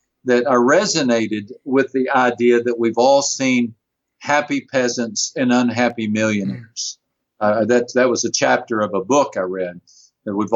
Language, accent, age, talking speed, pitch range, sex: English, American, 50-69, 160 wpm, 110-140 Hz, male